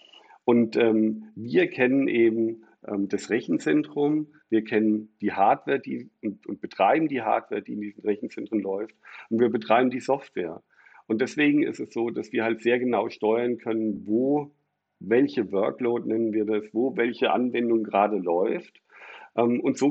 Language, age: German, 50-69